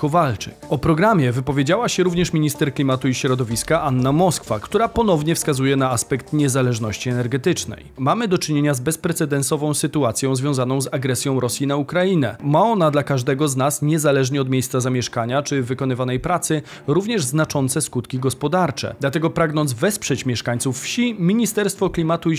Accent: native